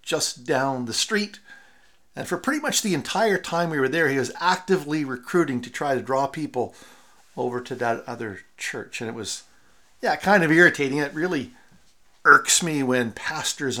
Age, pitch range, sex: 50-69, 125-180 Hz, male